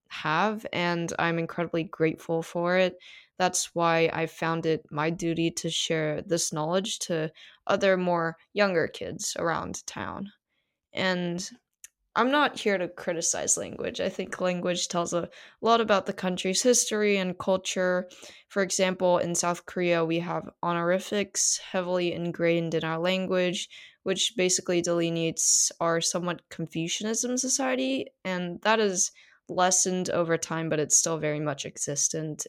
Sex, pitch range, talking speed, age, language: female, 165-190 Hz, 140 wpm, 20-39, English